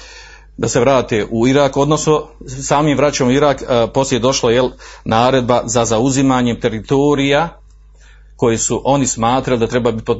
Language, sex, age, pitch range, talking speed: Croatian, male, 40-59, 115-145 Hz, 160 wpm